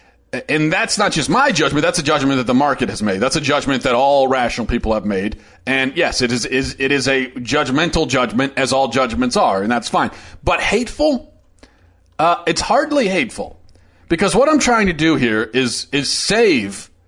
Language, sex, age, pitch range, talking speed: English, male, 40-59, 120-160 Hz, 195 wpm